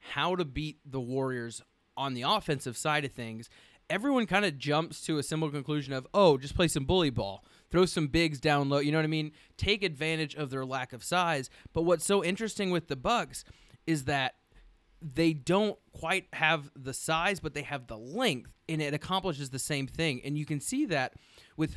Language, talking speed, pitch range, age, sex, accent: English, 205 wpm, 135-175 Hz, 20-39, male, American